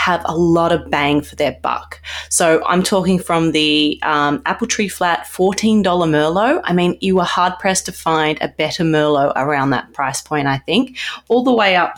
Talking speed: 205 wpm